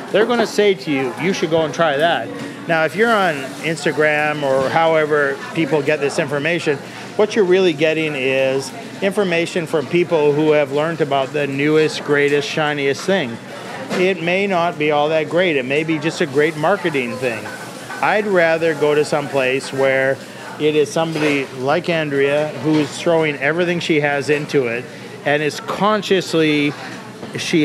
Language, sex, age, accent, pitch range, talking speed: English, male, 40-59, American, 145-175 Hz, 165 wpm